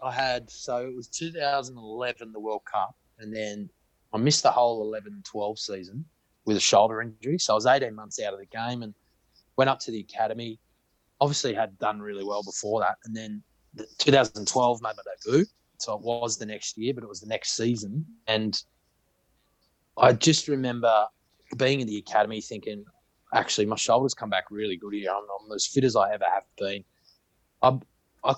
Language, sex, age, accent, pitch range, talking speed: English, male, 20-39, Australian, 105-125 Hz, 190 wpm